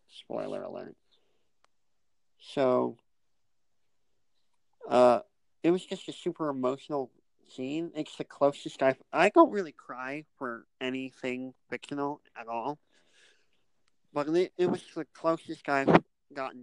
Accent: American